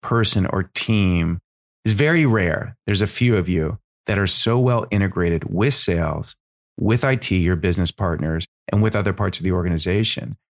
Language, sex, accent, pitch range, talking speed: English, male, American, 90-110 Hz, 170 wpm